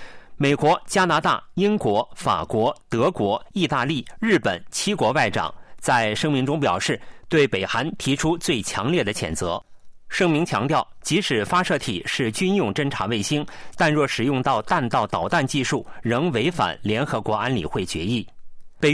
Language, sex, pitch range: Chinese, male, 125-175 Hz